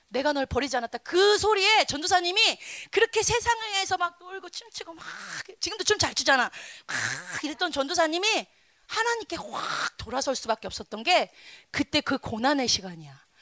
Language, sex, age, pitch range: Korean, female, 30-49, 260-410 Hz